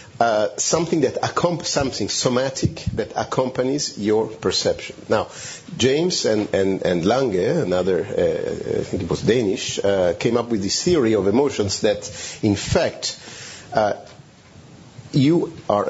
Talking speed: 135 wpm